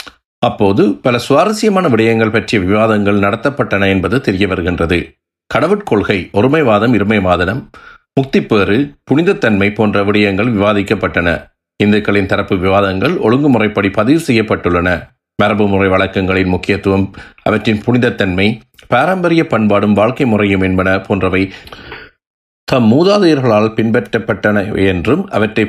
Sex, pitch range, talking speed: male, 95-115 Hz, 95 wpm